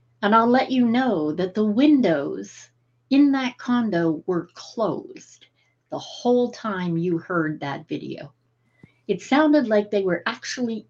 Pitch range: 175-255 Hz